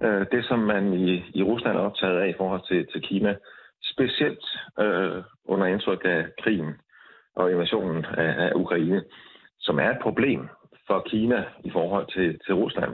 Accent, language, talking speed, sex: native, Danish, 160 wpm, male